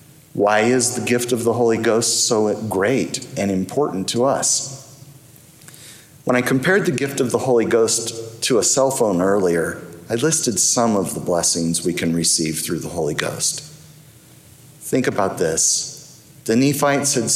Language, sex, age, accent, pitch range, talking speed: English, male, 50-69, American, 105-140 Hz, 165 wpm